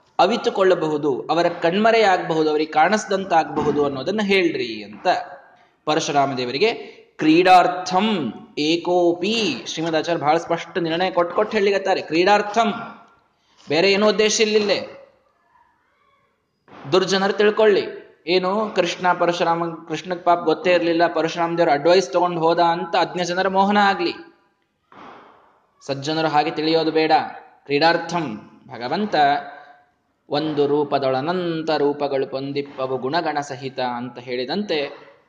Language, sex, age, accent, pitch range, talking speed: Kannada, male, 20-39, native, 140-195 Hz, 95 wpm